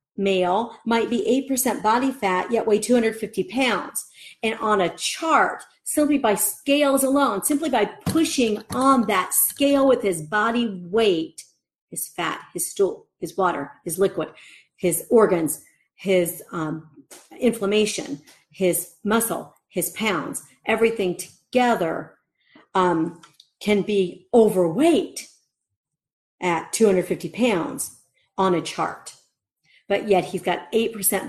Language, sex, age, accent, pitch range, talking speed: English, female, 40-59, American, 175-230 Hz, 120 wpm